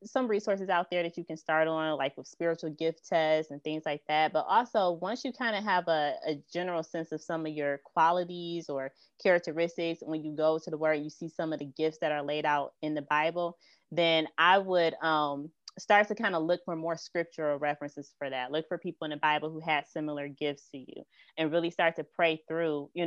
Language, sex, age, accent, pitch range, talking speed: English, female, 20-39, American, 150-170 Hz, 235 wpm